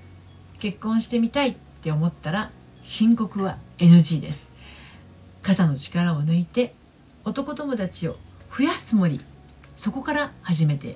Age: 40-59